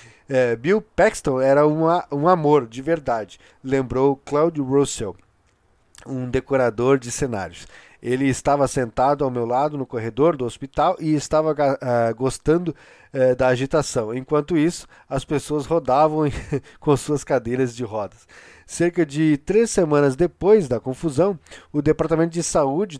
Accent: Brazilian